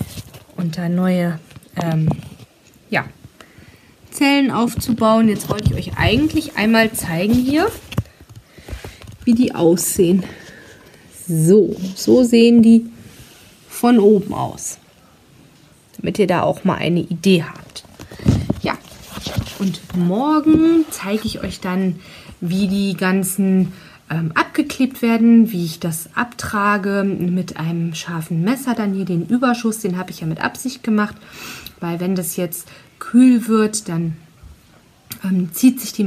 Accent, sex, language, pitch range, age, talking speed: German, female, German, 175-225 Hz, 30-49, 125 wpm